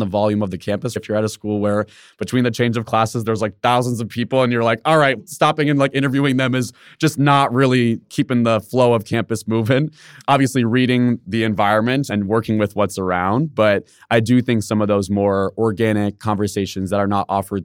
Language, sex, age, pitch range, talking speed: English, male, 20-39, 105-135 Hz, 220 wpm